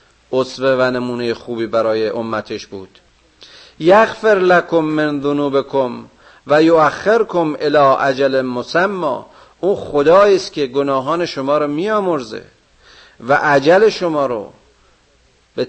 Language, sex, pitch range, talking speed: Persian, male, 130-170 Hz, 110 wpm